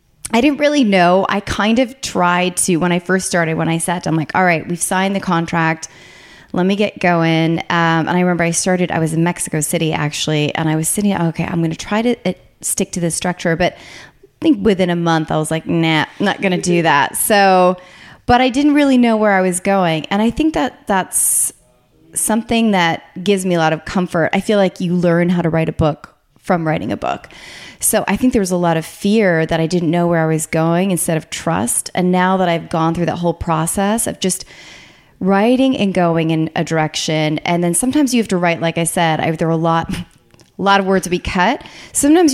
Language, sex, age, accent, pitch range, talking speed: English, female, 20-39, American, 165-195 Hz, 235 wpm